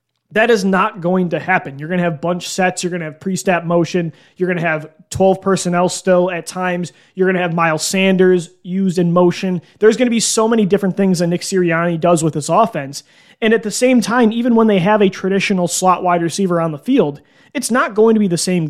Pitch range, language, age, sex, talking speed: 175-210 Hz, English, 20-39, male, 240 wpm